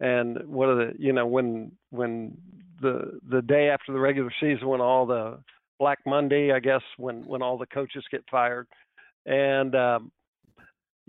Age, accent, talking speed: 50-69, American, 170 wpm